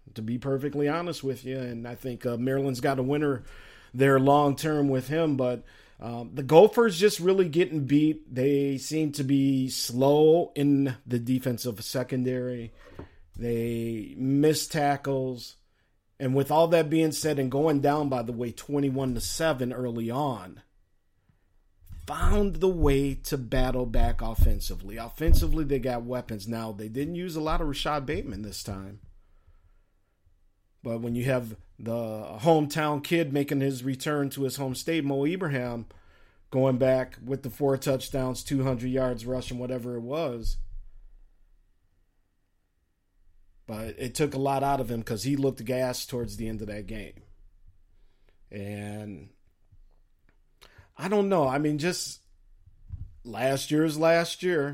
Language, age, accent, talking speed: English, 50-69, American, 150 wpm